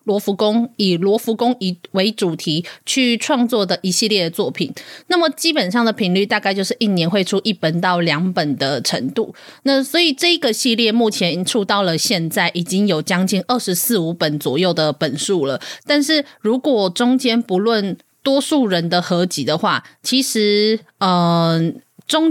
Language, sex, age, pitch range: Chinese, female, 20-39, 180-245 Hz